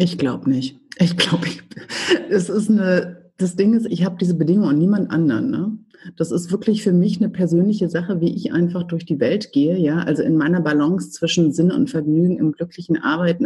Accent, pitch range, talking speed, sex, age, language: German, 155-185 Hz, 205 wpm, female, 30-49, German